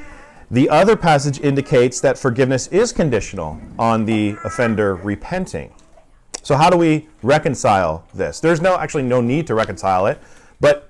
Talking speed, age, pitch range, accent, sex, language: 150 wpm, 40-59, 120-165 Hz, American, male, English